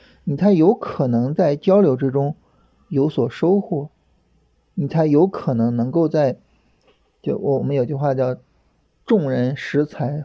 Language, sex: Chinese, male